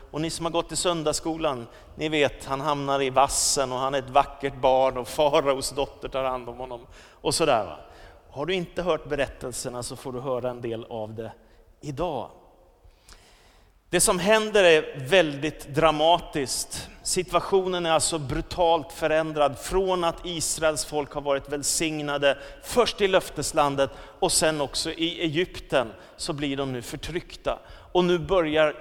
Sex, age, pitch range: male, 30-49, 130-165 Hz